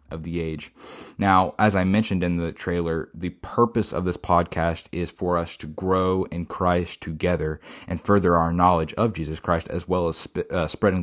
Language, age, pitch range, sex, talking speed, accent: English, 20-39, 85-100 Hz, male, 190 wpm, American